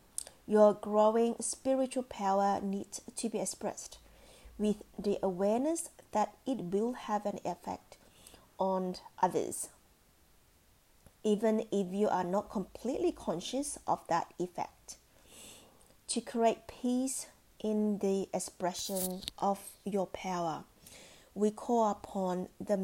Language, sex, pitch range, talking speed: English, female, 190-230 Hz, 110 wpm